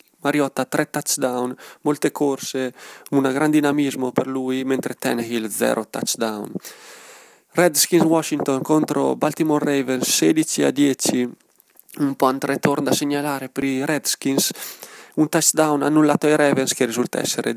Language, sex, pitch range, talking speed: Italian, male, 130-150 Hz, 125 wpm